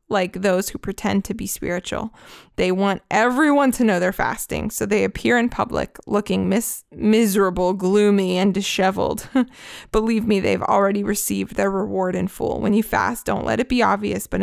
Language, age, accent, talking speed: English, 20-39, American, 175 wpm